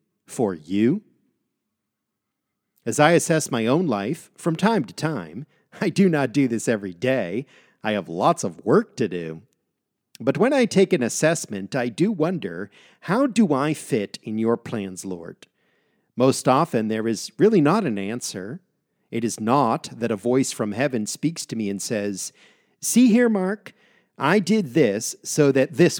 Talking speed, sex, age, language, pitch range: 170 wpm, male, 50-69, English, 115-165 Hz